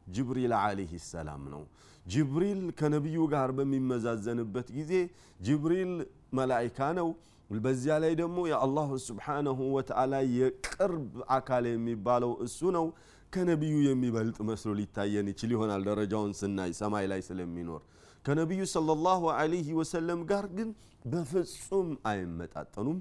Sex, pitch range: male, 105-150 Hz